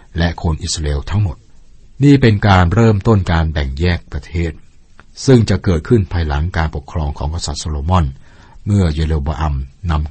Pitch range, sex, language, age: 75-95 Hz, male, Thai, 60-79